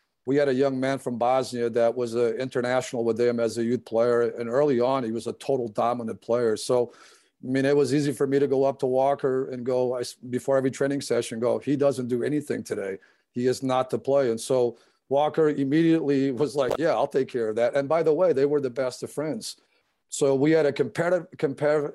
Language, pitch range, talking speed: English, 120-140 Hz, 225 wpm